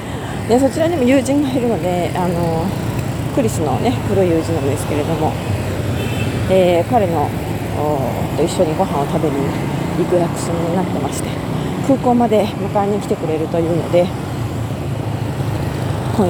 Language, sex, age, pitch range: Japanese, female, 40-59, 120-175 Hz